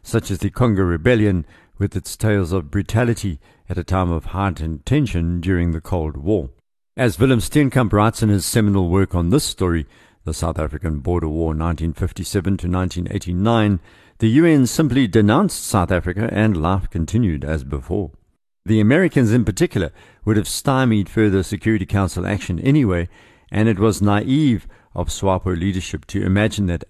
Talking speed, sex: 160 wpm, male